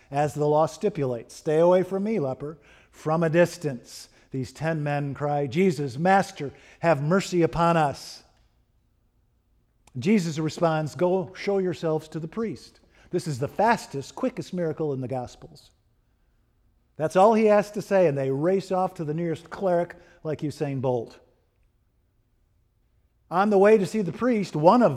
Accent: American